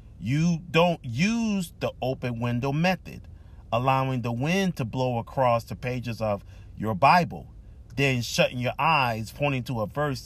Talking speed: 150 wpm